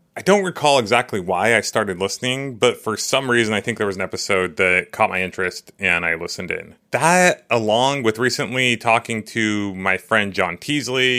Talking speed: 195 wpm